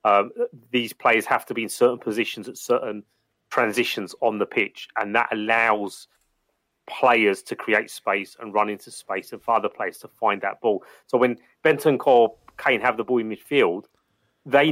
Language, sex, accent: English, male, British